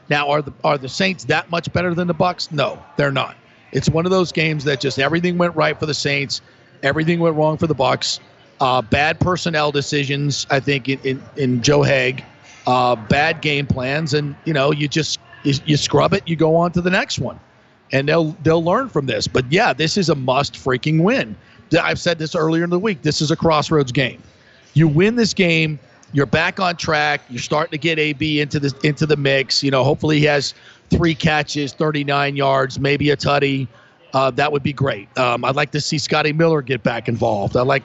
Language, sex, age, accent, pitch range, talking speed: English, male, 40-59, American, 135-160 Hz, 215 wpm